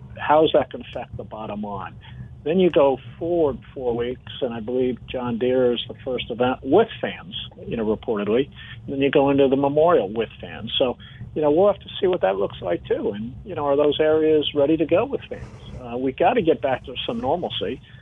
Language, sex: English, male